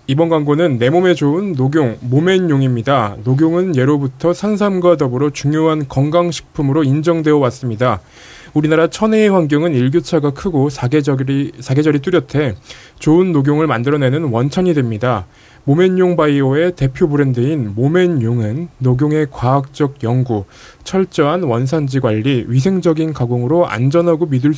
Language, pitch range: Korean, 130-170 Hz